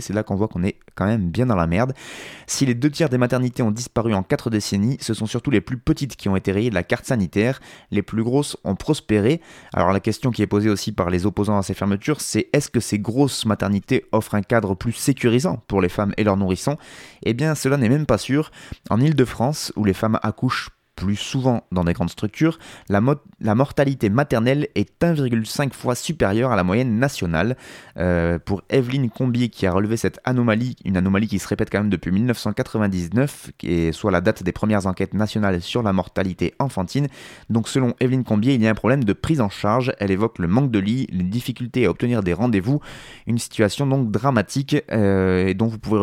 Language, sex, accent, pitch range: French, male, French, 100-130 Hz